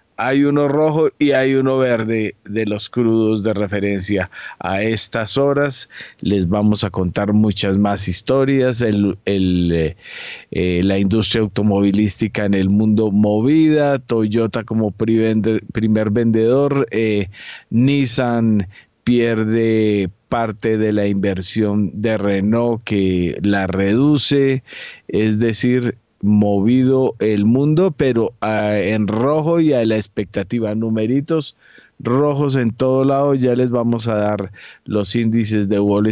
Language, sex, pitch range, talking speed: Spanish, male, 105-125 Hz, 125 wpm